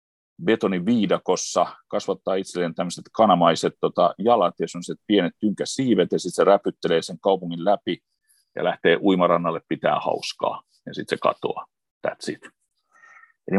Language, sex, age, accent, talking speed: Finnish, male, 40-59, native, 130 wpm